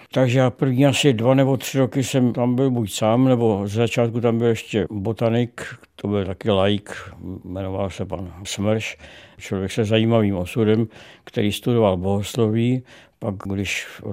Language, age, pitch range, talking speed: Czech, 60-79, 105-120 Hz, 160 wpm